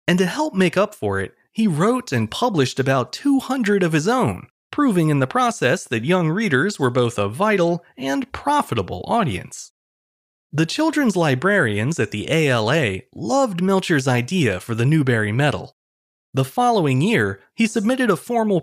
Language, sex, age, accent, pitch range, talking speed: English, male, 30-49, American, 130-210 Hz, 160 wpm